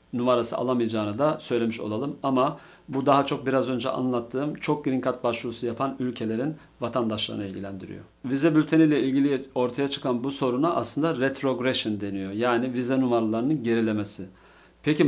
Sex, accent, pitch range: male, native, 115-135 Hz